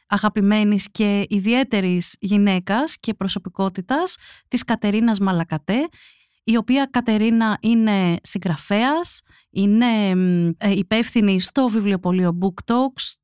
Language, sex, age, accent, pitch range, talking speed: Greek, female, 30-49, native, 190-245 Hz, 90 wpm